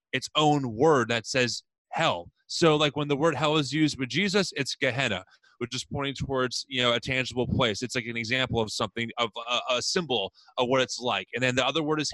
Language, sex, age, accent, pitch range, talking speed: English, male, 20-39, American, 130-155 Hz, 230 wpm